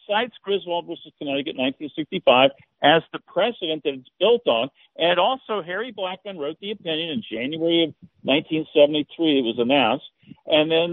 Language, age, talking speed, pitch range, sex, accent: English, 50-69, 160 wpm, 145-190 Hz, male, American